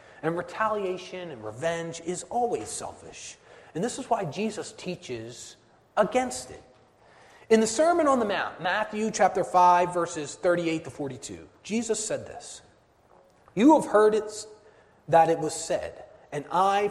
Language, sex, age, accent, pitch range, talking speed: English, male, 30-49, American, 165-215 Hz, 145 wpm